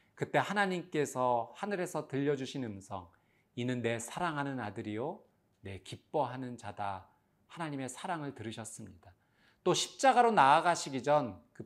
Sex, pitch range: male, 115-155 Hz